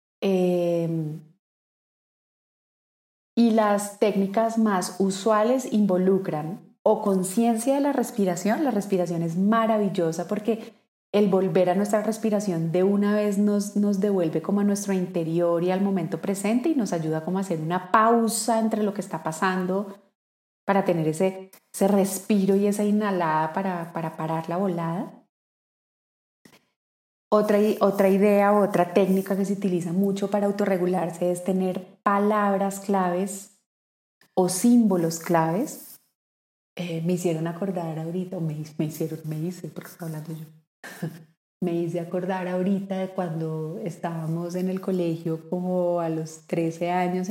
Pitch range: 170-200 Hz